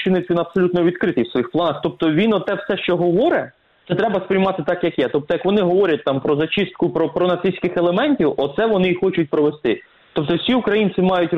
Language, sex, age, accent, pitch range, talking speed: Russian, male, 20-39, native, 145-185 Hz, 200 wpm